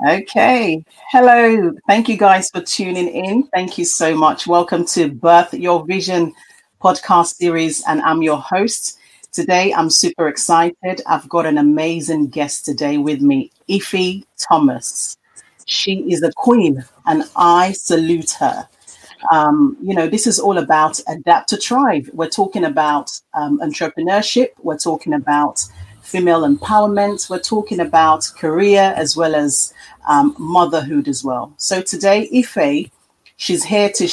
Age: 40-59